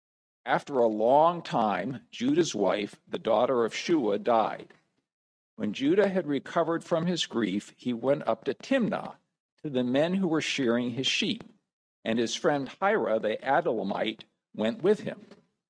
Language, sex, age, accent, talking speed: English, male, 50-69, American, 155 wpm